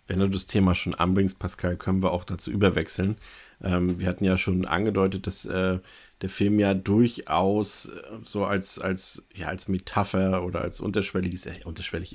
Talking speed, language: 185 wpm, German